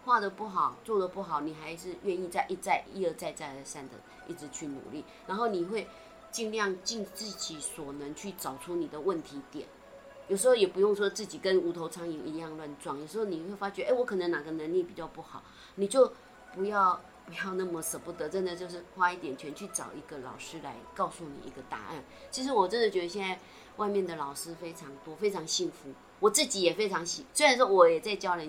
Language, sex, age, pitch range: Chinese, female, 30-49, 160-205 Hz